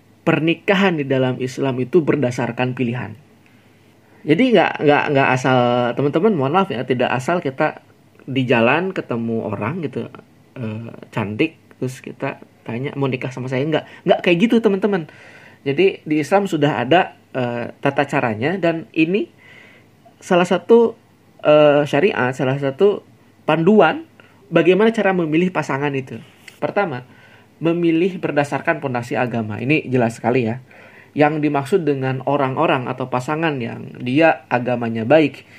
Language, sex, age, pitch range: Indonesian, male, 20-39, 125-165 Hz